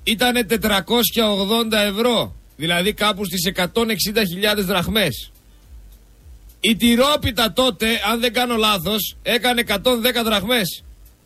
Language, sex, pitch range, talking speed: Greek, male, 205-245 Hz, 95 wpm